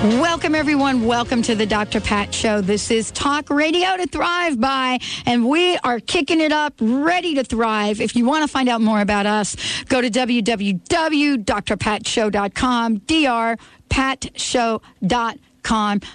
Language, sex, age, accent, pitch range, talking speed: English, female, 50-69, American, 210-255 Hz, 140 wpm